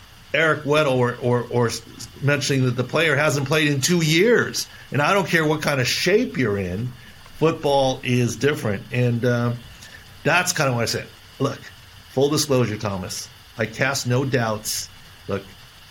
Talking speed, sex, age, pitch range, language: 165 wpm, male, 50-69, 105-130 Hz, English